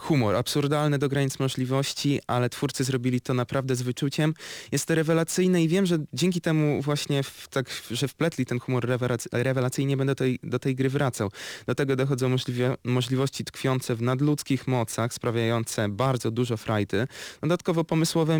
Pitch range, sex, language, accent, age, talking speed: 120-150 Hz, male, Polish, native, 20-39, 160 wpm